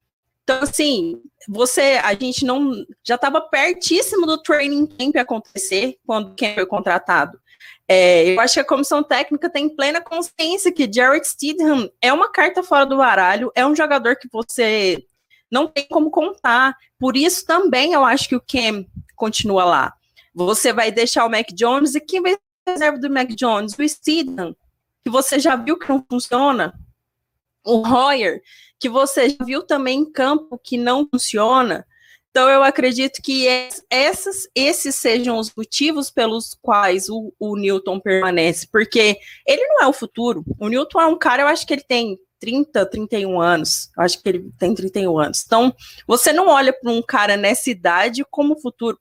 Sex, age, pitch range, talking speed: female, 20-39, 220-295 Hz, 175 wpm